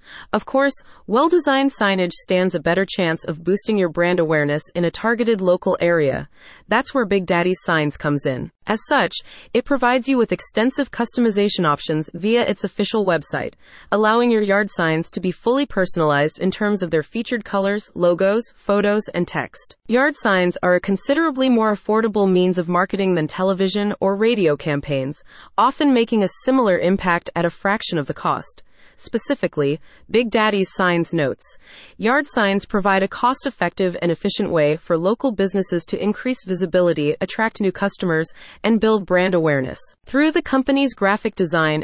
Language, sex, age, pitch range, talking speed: English, female, 30-49, 170-225 Hz, 160 wpm